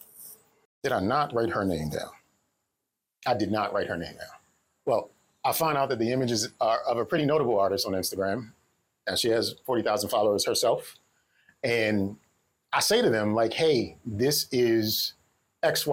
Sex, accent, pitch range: male, American, 100-135 Hz